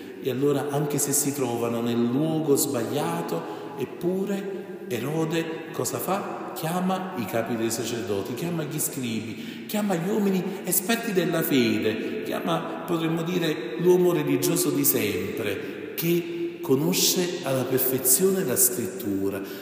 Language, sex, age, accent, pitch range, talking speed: Italian, male, 40-59, native, 120-170 Hz, 120 wpm